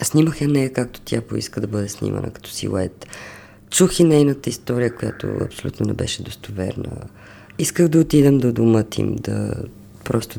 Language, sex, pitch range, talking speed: Bulgarian, female, 100-120 Hz, 175 wpm